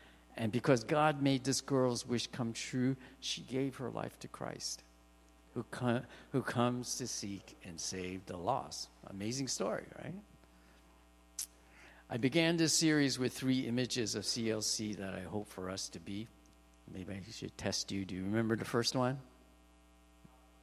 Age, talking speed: 50-69, 160 wpm